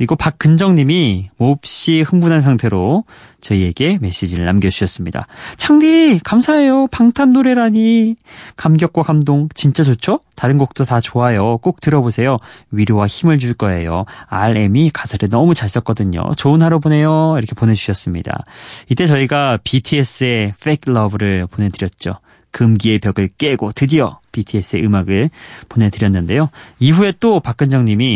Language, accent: Korean, native